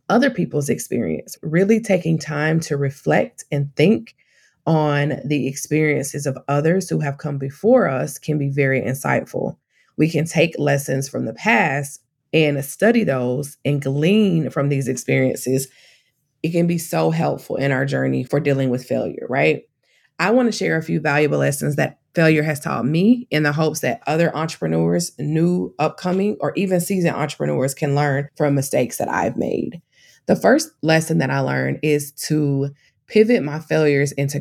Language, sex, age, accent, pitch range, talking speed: English, female, 20-39, American, 135-165 Hz, 165 wpm